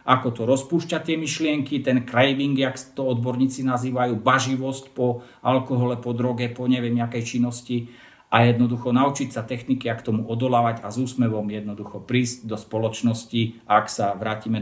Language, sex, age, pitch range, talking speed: Slovak, male, 50-69, 110-130 Hz, 155 wpm